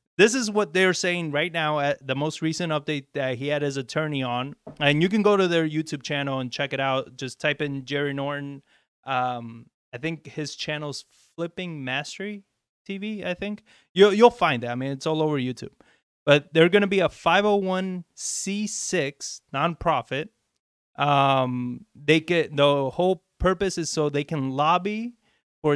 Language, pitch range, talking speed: English, 145-185 Hz, 175 wpm